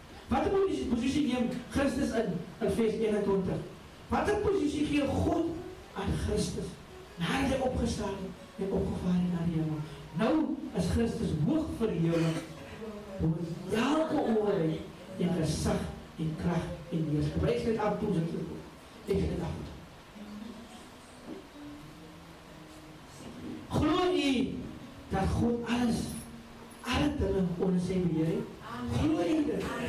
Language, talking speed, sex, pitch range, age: English, 110 wpm, male, 170-230 Hz, 40-59